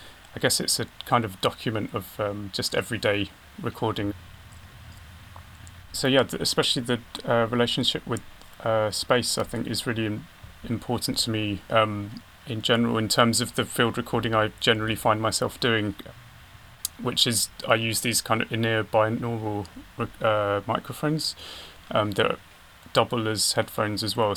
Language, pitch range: English, 100-115 Hz